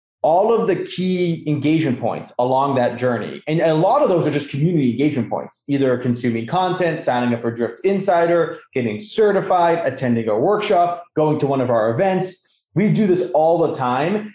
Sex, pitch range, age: male, 130-175 Hz, 20-39